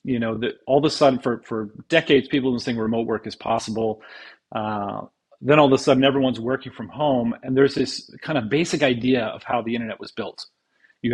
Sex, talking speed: male, 215 wpm